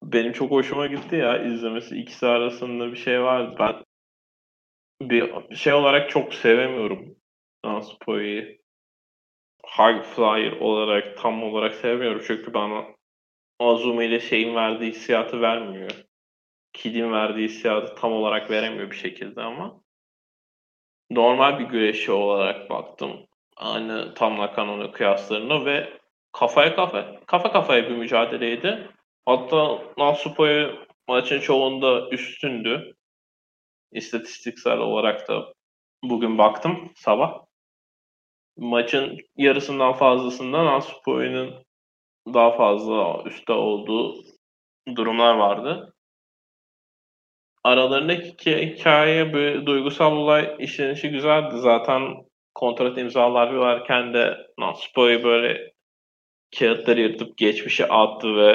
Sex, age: male, 20-39